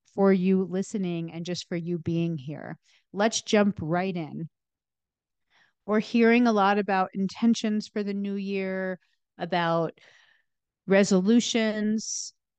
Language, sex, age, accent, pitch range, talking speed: English, female, 40-59, American, 180-225 Hz, 120 wpm